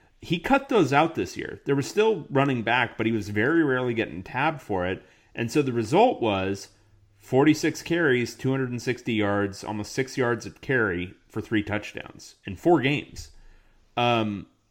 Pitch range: 105-130 Hz